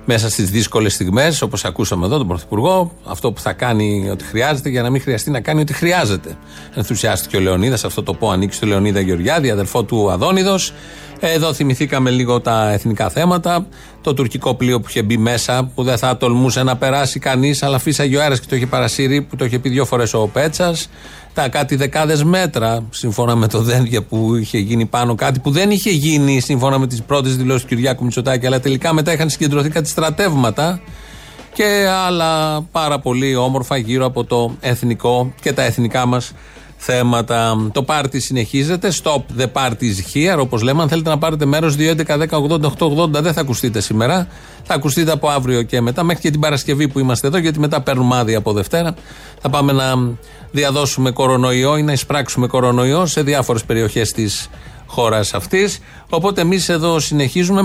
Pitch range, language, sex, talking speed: 120-155 Hz, Greek, male, 180 wpm